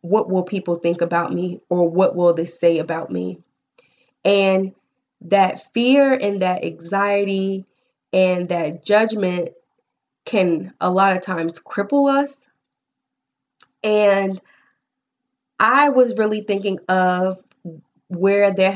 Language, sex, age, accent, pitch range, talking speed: English, female, 20-39, American, 180-210 Hz, 120 wpm